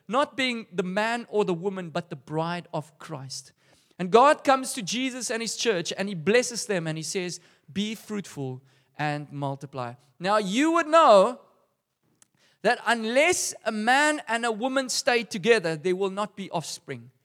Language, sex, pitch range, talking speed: English, male, 165-245 Hz, 170 wpm